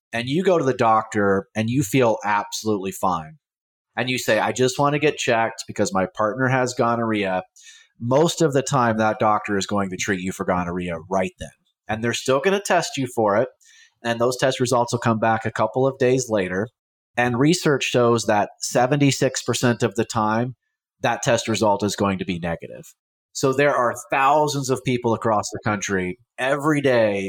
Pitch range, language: 105-135 Hz, English